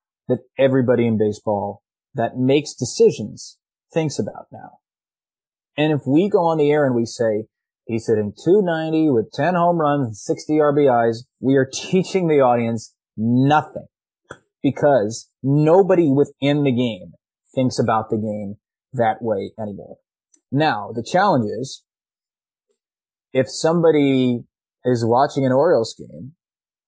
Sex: male